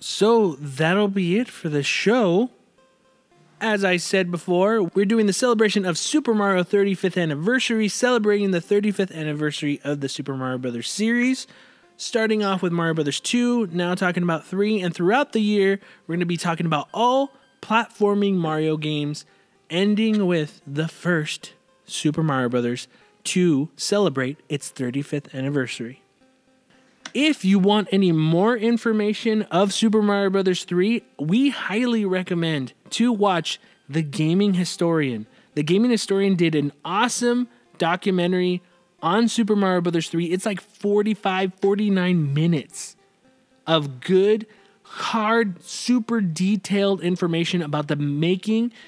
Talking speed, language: 135 wpm, English